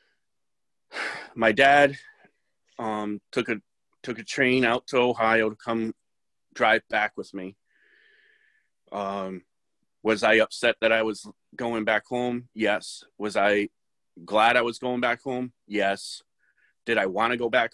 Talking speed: 145 wpm